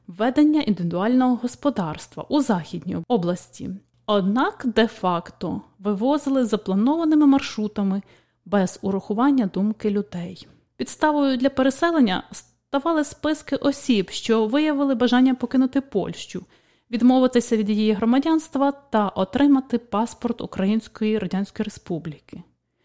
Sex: female